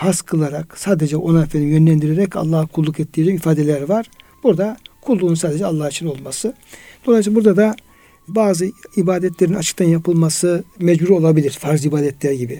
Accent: native